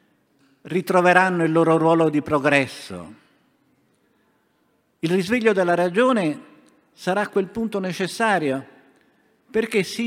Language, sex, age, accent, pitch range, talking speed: Italian, male, 50-69, native, 145-210 Hz, 100 wpm